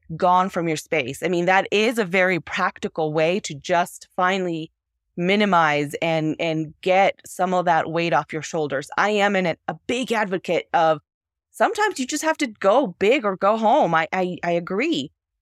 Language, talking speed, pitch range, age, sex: English, 185 wpm, 170-230 Hz, 20-39, female